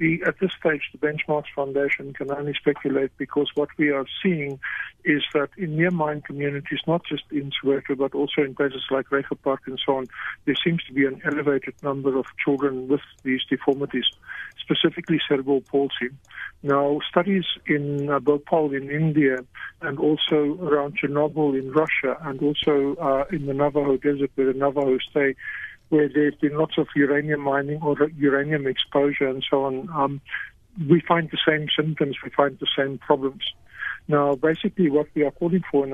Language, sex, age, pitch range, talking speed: English, male, 50-69, 140-150 Hz, 170 wpm